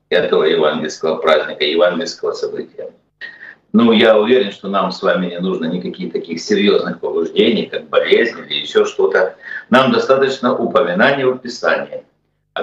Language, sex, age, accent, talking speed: Russian, male, 50-69, native, 140 wpm